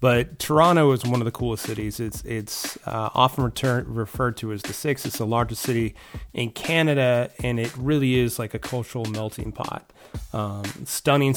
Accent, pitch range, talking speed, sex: American, 110-130 Hz, 185 wpm, male